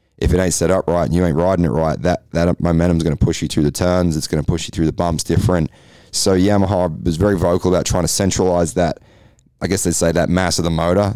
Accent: Australian